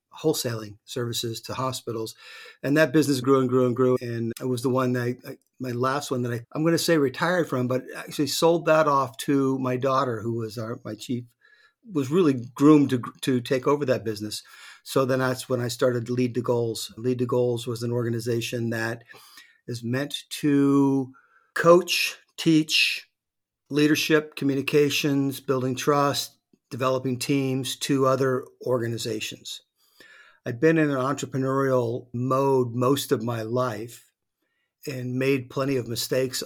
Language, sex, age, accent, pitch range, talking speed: English, male, 50-69, American, 120-140 Hz, 160 wpm